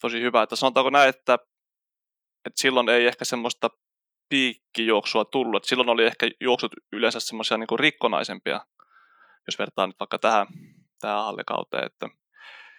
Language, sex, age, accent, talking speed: Finnish, male, 20-39, native, 135 wpm